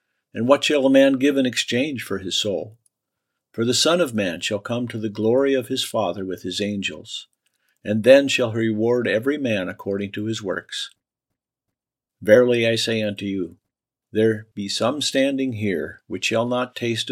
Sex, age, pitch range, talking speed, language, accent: male, 50-69, 100-125 Hz, 180 wpm, English, American